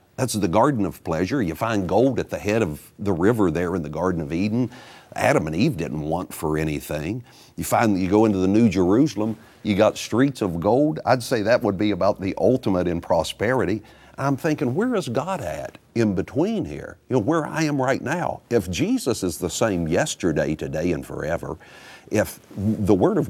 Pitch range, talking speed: 100-130 Hz, 205 wpm